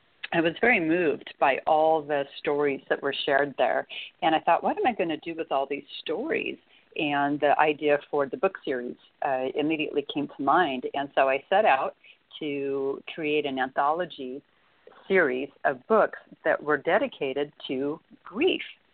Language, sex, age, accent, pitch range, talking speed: English, female, 50-69, American, 140-170 Hz, 170 wpm